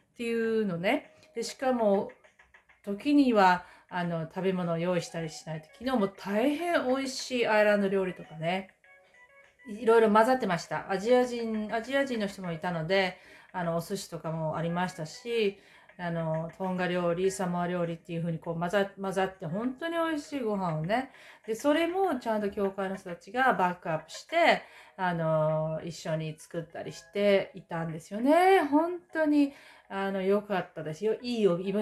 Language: Japanese